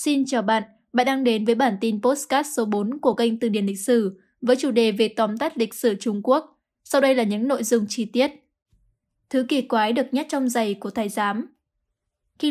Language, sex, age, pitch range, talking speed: Vietnamese, female, 10-29, 225-260 Hz, 225 wpm